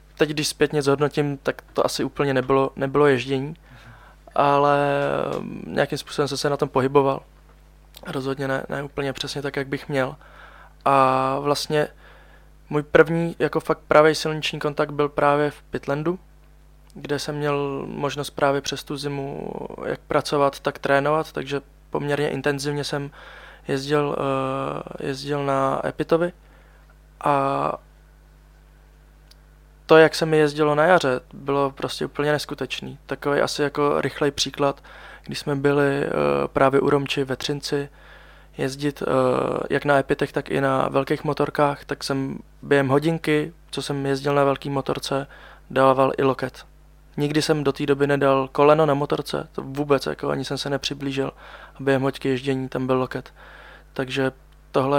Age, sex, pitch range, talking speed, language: 20-39, male, 135-150 Hz, 145 wpm, Czech